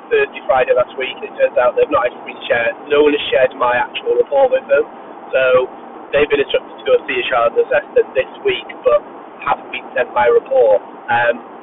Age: 30-49